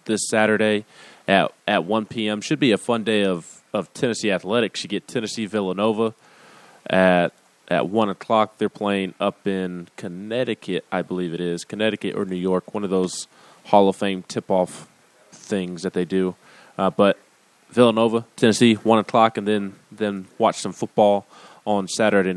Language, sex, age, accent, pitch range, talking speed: English, male, 20-39, American, 95-110 Hz, 165 wpm